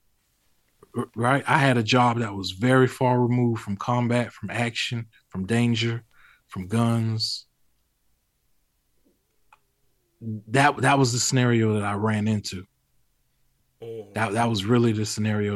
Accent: American